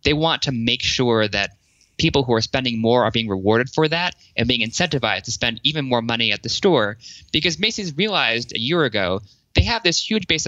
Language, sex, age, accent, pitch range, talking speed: English, male, 20-39, American, 110-135 Hz, 220 wpm